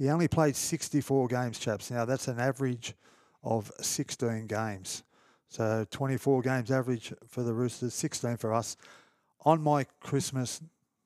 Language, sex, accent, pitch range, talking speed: English, male, Australian, 115-135 Hz, 140 wpm